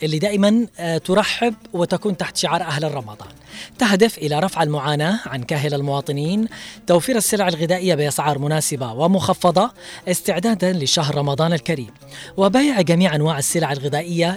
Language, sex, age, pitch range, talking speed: Arabic, female, 20-39, 150-190 Hz, 125 wpm